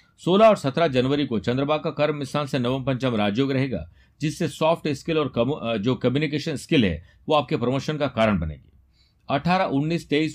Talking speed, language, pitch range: 180 wpm, Hindi, 100-150 Hz